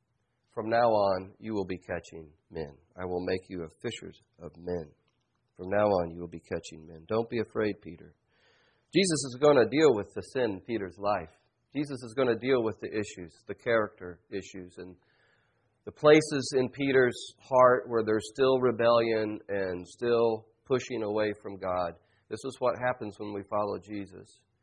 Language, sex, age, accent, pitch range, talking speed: English, male, 40-59, American, 95-120 Hz, 180 wpm